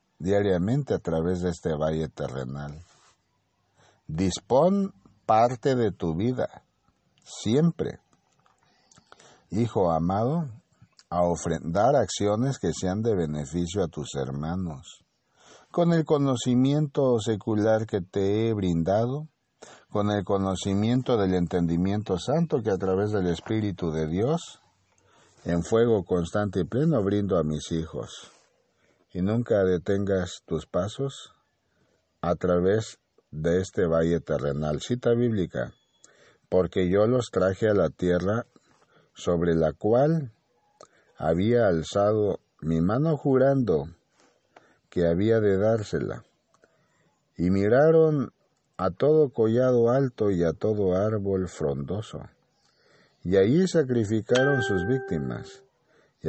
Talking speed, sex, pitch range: 110 wpm, male, 90-125 Hz